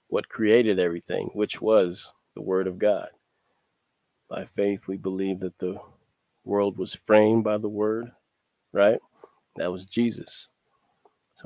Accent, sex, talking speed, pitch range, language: American, male, 135 wpm, 95-110 Hz, English